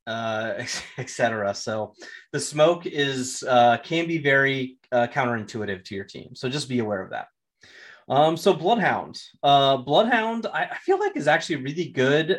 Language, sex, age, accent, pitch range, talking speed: English, male, 30-49, American, 120-150 Hz, 165 wpm